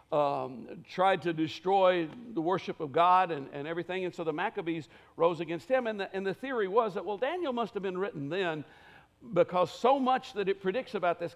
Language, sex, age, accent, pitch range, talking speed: English, male, 60-79, American, 165-205 Hz, 210 wpm